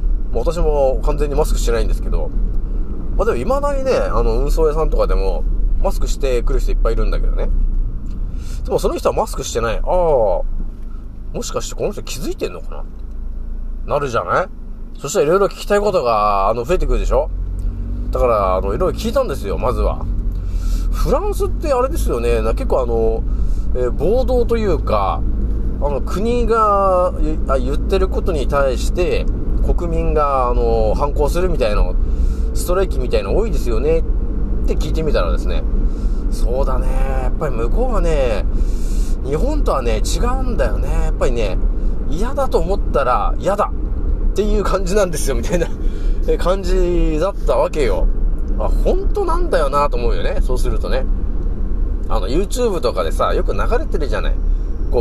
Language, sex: Japanese, male